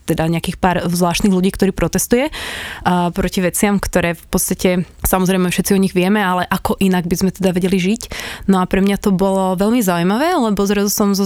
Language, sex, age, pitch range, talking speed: Slovak, female, 20-39, 180-210 Hz, 205 wpm